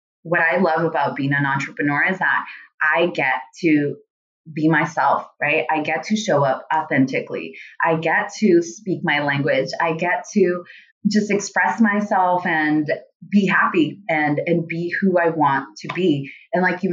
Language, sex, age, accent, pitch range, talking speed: English, female, 20-39, American, 155-190 Hz, 165 wpm